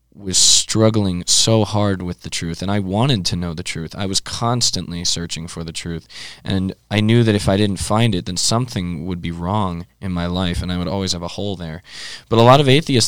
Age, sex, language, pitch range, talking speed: 20-39, male, English, 85-105 Hz, 235 wpm